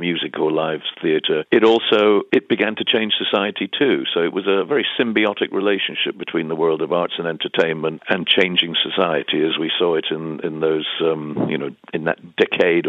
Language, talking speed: English, 195 wpm